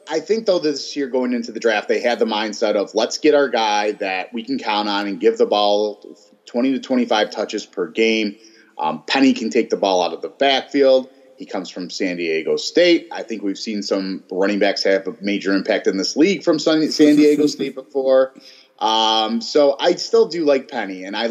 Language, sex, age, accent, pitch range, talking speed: English, male, 30-49, American, 105-165 Hz, 215 wpm